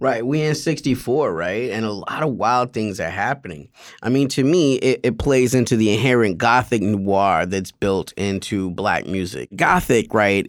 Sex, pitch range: male, 105-135 Hz